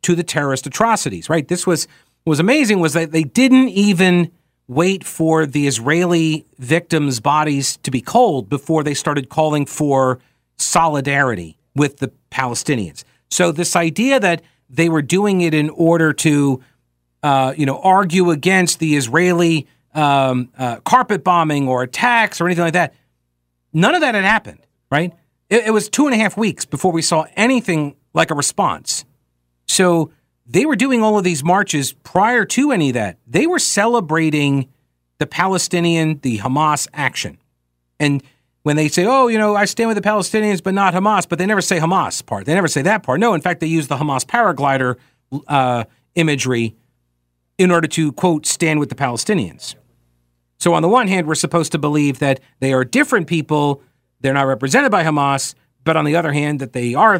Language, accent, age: English, American, 40-59